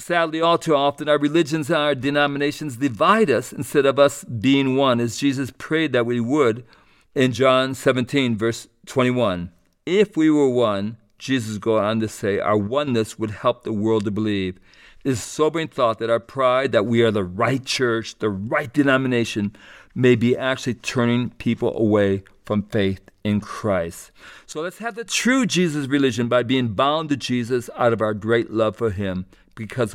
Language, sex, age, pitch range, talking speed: English, male, 50-69, 110-140 Hz, 180 wpm